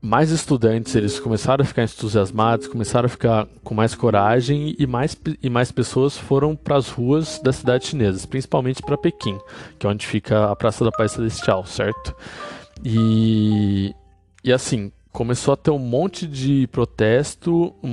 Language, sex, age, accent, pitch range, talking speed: Portuguese, male, 20-39, Brazilian, 110-140 Hz, 165 wpm